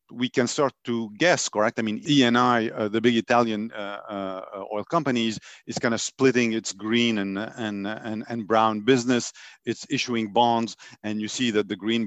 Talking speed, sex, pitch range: 190 wpm, male, 110-135 Hz